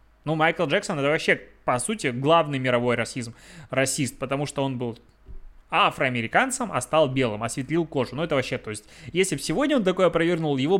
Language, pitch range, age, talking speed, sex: Russian, 125-155 Hz, 20-39, 180 wpm, male